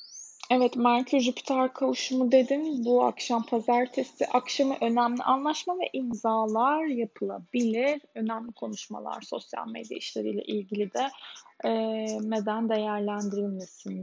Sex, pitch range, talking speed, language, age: female, 205-245 Hz, 95 wpm, Turkish, 10-29